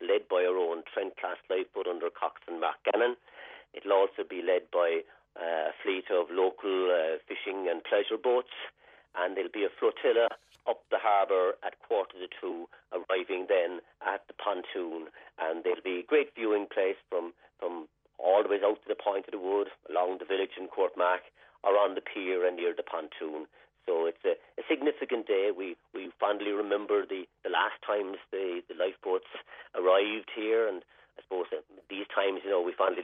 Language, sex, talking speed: English, male, 185 wpm